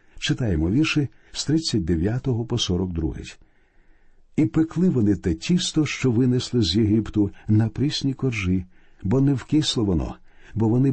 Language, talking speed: Ukrainian, 130 wpm